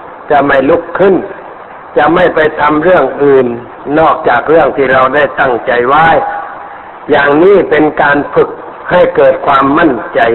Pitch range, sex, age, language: 135-170 Hz, male, 60-79, Thai